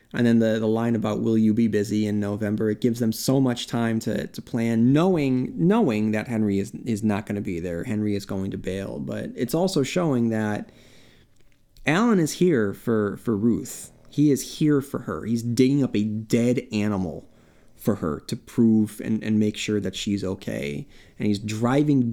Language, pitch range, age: English, 105-130 Hz, 30-49